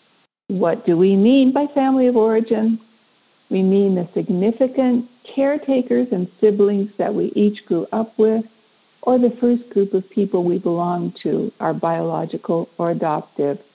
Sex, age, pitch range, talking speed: female, 60-79, 180-220 Hz, 150 wpm